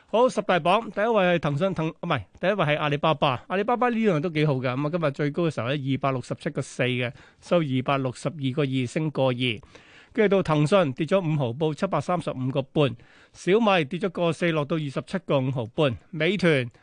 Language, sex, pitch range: Chinese, male, 135-180 Hz